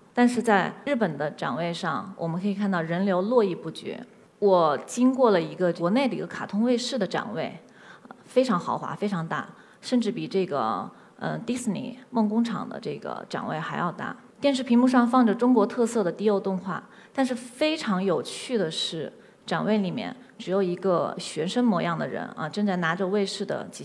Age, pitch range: 20-39, 185-235 Hz